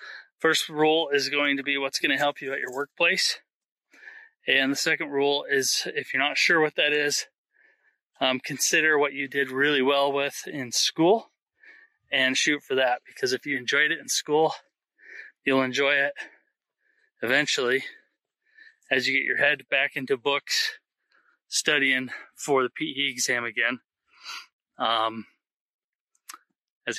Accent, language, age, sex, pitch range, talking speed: American, English, 20-39, male, 140-170 Hz, 150 wpm